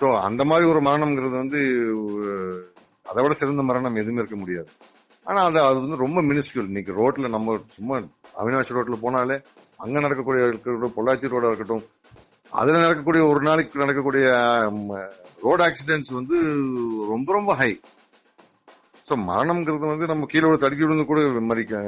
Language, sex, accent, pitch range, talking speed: Tamil, male, native, 110-155 Hz, 140 wpm